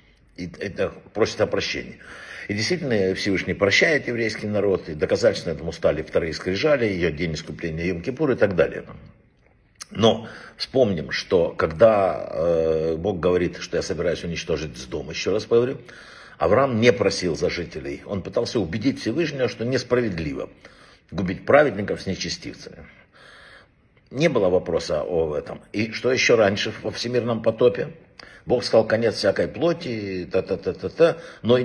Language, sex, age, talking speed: Russian, male, 60-79, 140 wpm